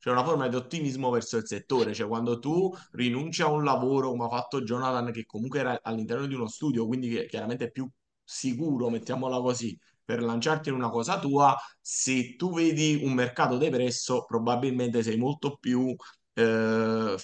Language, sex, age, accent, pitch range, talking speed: Italian, male, 20-39, native, 115-145 Hz, 180 wpm